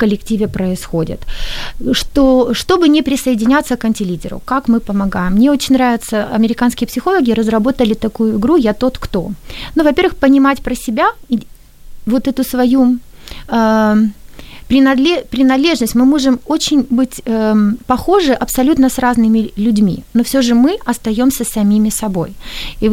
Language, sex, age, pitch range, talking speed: Ukrainian, female, 30-49, 215-270 Hz, 135 wpm